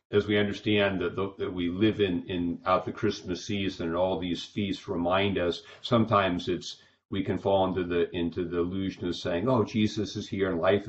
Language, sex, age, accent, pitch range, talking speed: English, male, 50-69, American, 85-105 Hz, 210 wpm